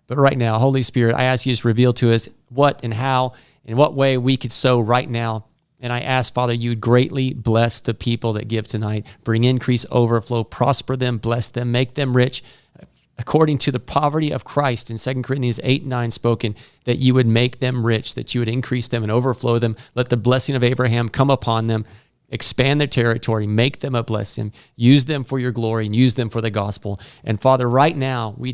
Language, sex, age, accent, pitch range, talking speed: English, male, 40-59, American, 115-140 Hz, 215 wpm